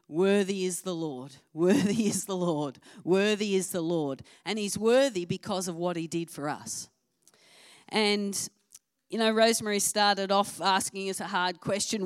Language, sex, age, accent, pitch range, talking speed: English, female, 40-59, Australian, 150-190 Hz, 165 wpm